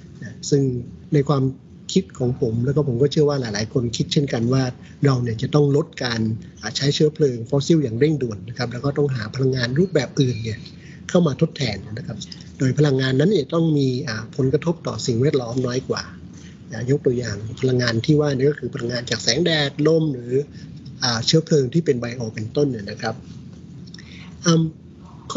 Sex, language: male, Thai